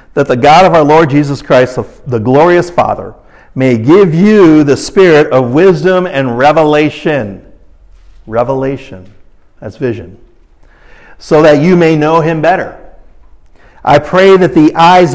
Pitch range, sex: 135-170 Hz, male